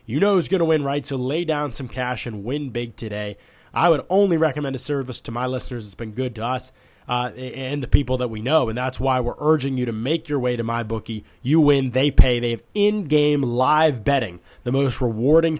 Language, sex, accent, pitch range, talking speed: English, male, American, 120-150 Hz, 240 wpm